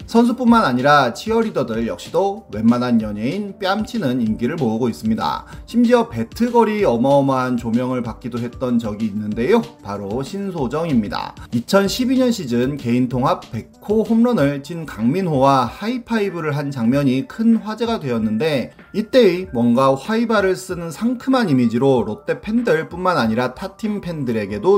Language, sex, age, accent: Korean, male, 30-49, native